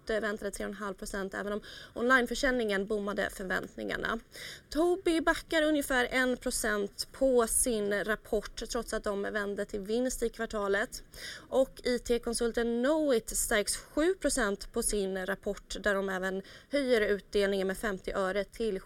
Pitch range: 205-250 Hz